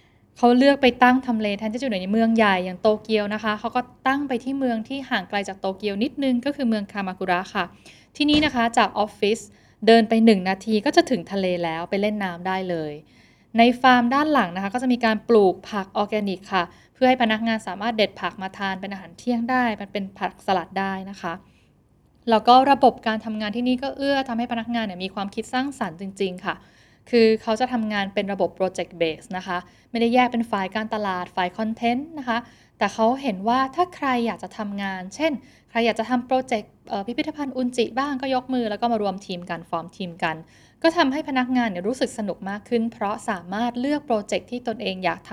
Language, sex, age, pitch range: Thai, female, 10-29, 190-245 Hz